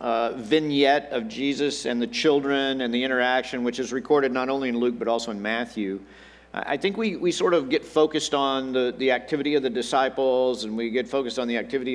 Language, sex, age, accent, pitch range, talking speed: English, male, 50-69, American, 125-155 Hz, 215 wpm